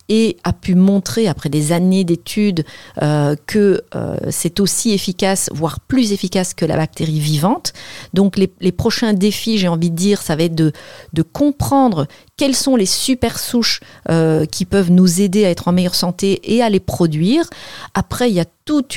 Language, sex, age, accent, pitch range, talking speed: French, female, 40-59, French, 165-215 Hz, 190 wpm